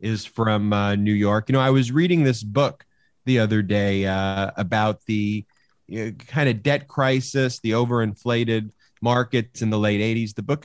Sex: male